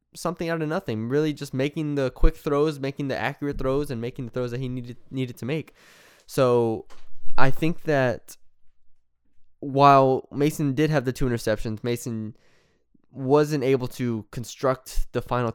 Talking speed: 160 wpm